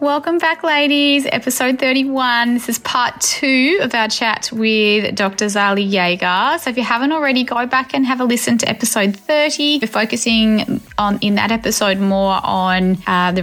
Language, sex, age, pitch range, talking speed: English, female, 20-39, 180-235 Hz, 180 wpm